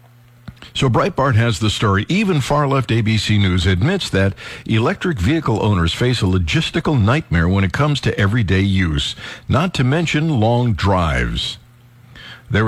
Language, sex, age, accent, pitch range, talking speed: English, male, 60-79, American, 95-125 Hz, 140 wpm